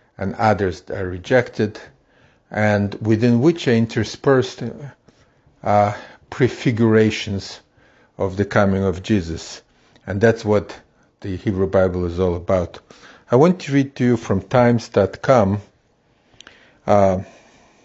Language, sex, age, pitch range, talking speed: English, male, 50-69, 100-125 Hz, 110 wpm